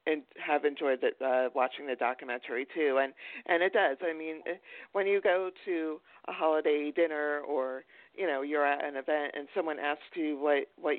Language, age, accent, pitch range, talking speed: English, 50-69, American, 145-175 Hz, 190 wpm